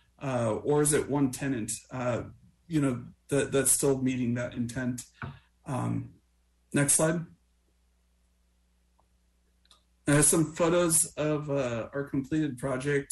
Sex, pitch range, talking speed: male, 115-140 Hz, 120 wpm